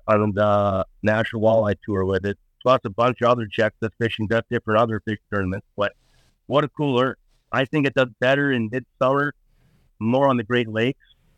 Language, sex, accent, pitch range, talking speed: English, male, American, 105-130 Hz, 195 wpm